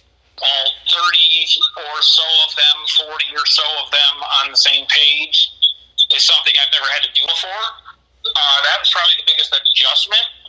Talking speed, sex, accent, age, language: 170 wpm, male, American, 40-59, English